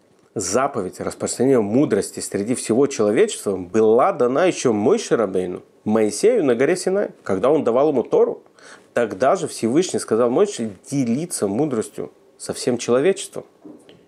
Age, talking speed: 40-59, 130 wpm